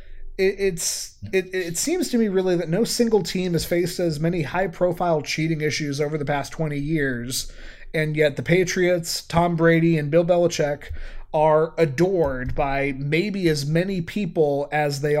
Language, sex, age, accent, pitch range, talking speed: English, male, 30-49, American, 145-180 Hz, 160 wpm